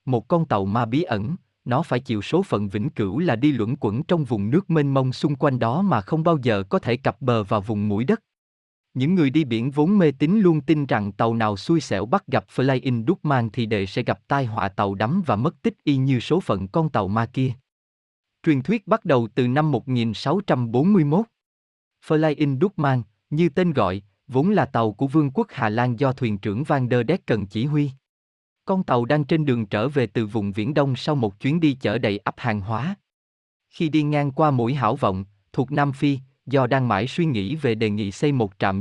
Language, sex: Vietnamese, male